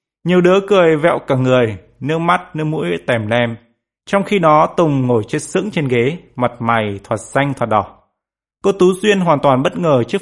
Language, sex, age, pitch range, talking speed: Vietnamese, male, 20-39, 120-180 Hz, 205 wpm